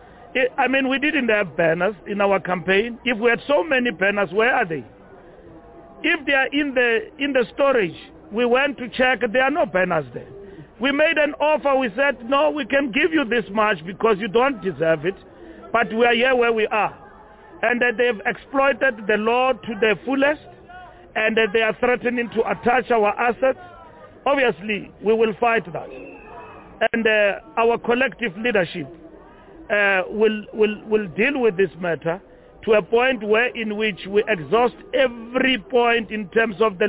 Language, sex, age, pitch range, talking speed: English, male, 40-59, 200-245 Hz, 175 wpm